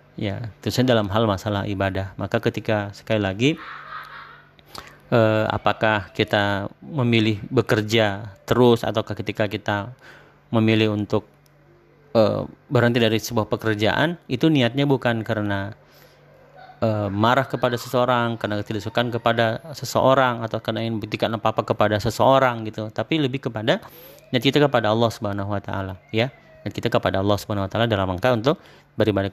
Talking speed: 135 wpm